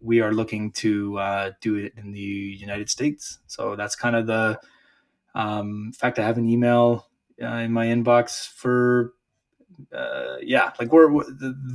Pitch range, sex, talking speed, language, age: 115-140 Hz, male, 165 wpm, English, 20-39